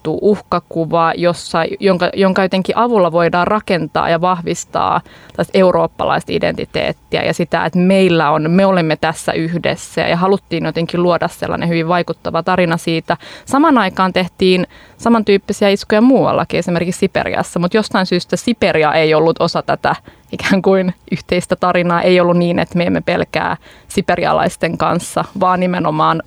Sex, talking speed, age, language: female, 140 wpm, 20-39, Finnish